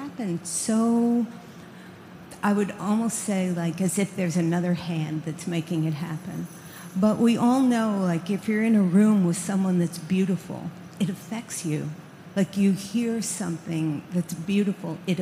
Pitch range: 175-220 Hz